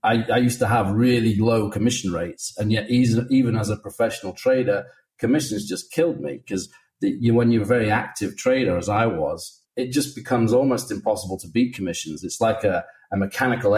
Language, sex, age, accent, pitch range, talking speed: English, male, 30-49, British, 105-130 Hz, 195 wpm